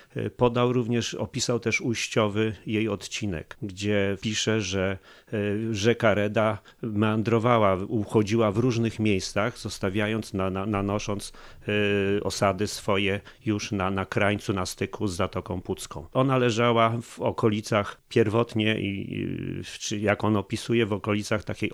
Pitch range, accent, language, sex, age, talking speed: 100-115 Hz, native, Polish, male, 40-59, 115 wpm